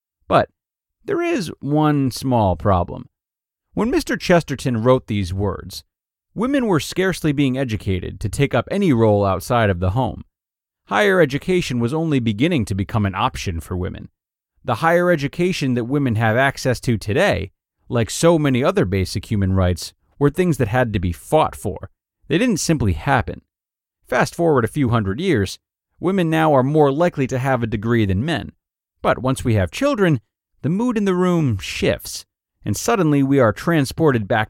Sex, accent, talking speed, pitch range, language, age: male, American, 170 wpm, 105-160 Hz, English, 30-49